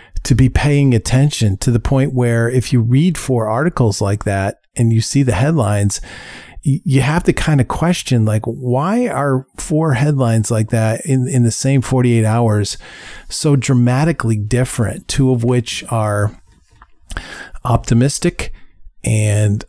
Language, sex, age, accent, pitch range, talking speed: English, male, 40-59, American, 110-135 Hz, 145 wpm